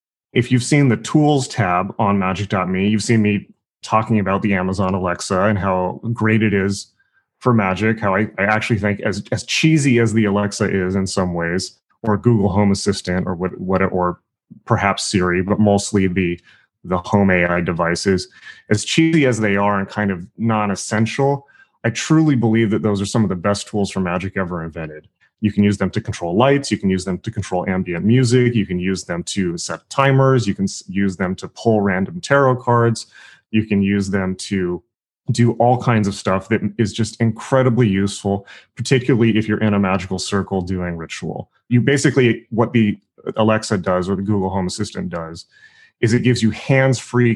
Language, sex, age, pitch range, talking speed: English, male, 30-49, 95-115 Hz, 190 wpm